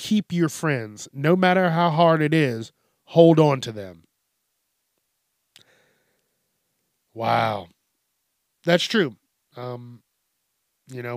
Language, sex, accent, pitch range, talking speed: English, male, American, 120-155 Hz, 100 wpm